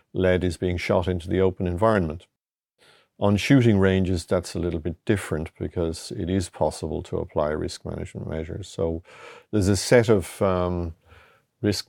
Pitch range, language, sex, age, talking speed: 85-100 Hz, English, male, 50-69, 160 wpm